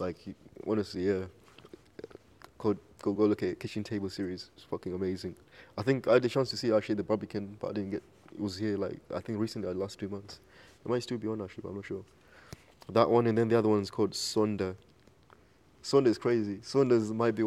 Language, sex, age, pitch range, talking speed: English, male, 20-39, 100-120 Hz, 220 wpm